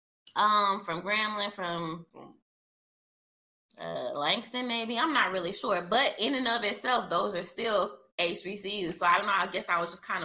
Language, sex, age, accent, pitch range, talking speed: English, female, 20-39, American, 160-210 Hz, 170 wpm